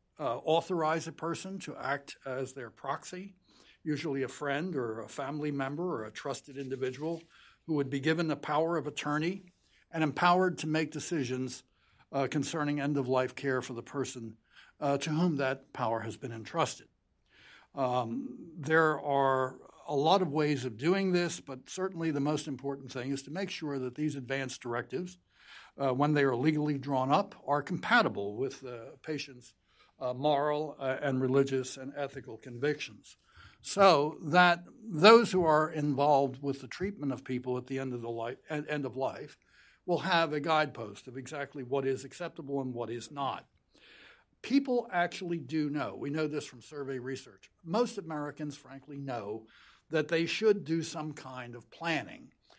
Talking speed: 165 wpm